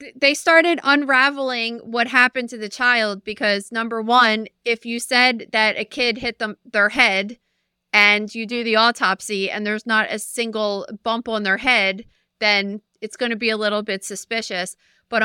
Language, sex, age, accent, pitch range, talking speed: English, female, 30-49, American, 205-235 Hz, 175 wpm